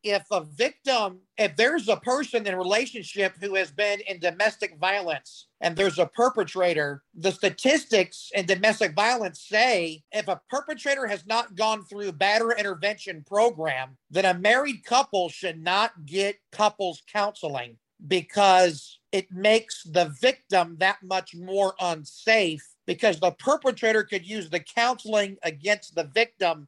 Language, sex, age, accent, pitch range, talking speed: English, male, 40-59, American, 180-220 Hz, 145 wpm